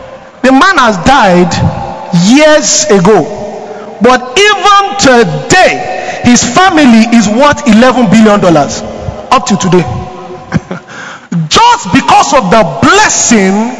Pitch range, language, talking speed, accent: 215-300 Hz, English, 100 wpm, Nigerian